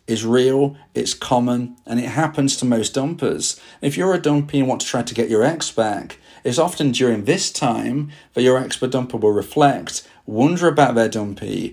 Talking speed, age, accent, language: 195 wpm, 40-59, British, English